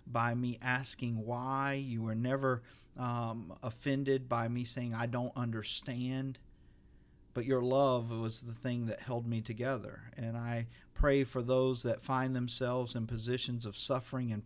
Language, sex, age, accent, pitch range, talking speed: English, male, 40-59, American, 110-125 Hz, 160 wpm